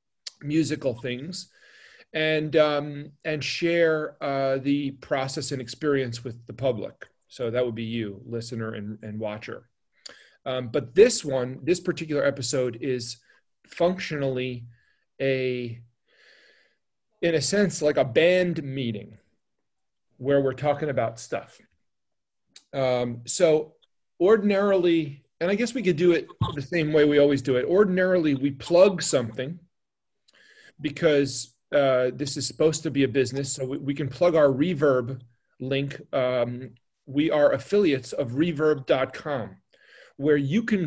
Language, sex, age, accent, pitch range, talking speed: English, male, 40-59, American, 130-165 Hz, 135 wpm